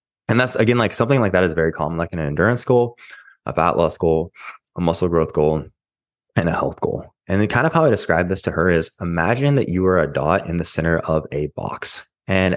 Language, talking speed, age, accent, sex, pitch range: English, 240 wpm, 20-39, American, male, 80-95 Hz